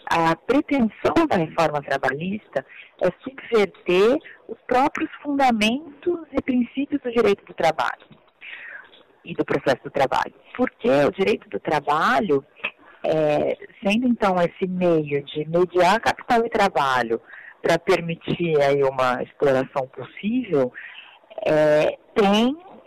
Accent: Brazilian